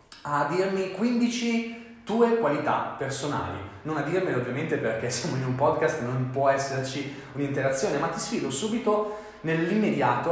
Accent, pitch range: native, 120-175 Hz